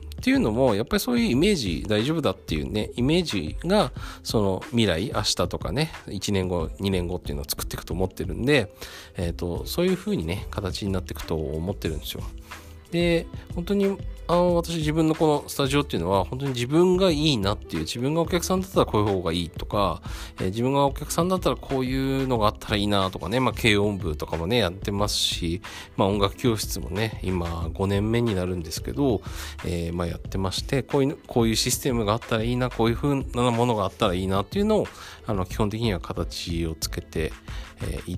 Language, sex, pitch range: Japanese, male, 90-130 Hz